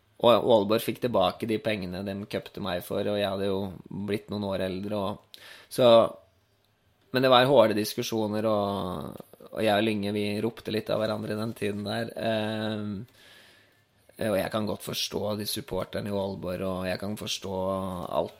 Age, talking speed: 20-39, 170 wpm